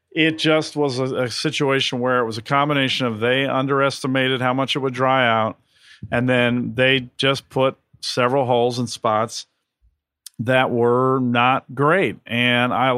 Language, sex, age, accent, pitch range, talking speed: English, male, 40-59, American, 120-135 Hz, 160 wpm